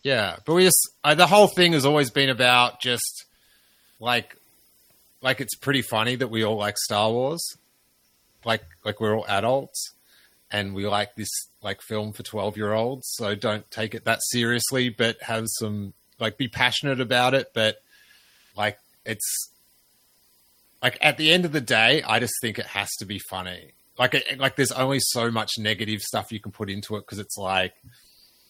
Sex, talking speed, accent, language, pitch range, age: male, 180 wpm, Australian, English, 100-125 Hz, 30-49